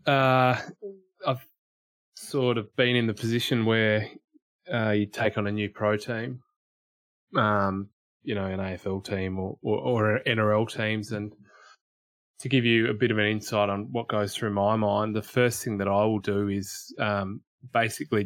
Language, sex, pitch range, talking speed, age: English, male, 100-115 Hz, 175 wpm, 20-39